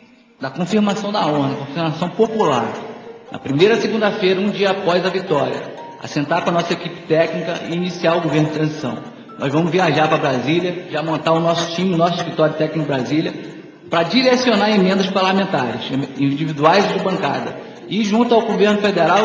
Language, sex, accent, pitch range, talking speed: Portuguese, male, Brazilian, 155-205 Hz, 170 wpm